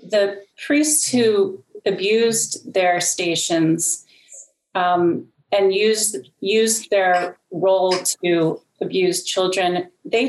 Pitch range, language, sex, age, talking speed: 180-220 Hz, English, female, 30-49, 95 wpm